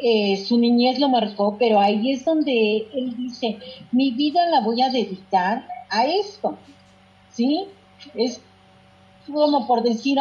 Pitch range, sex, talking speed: 195-260 Hz, female, 140 wpm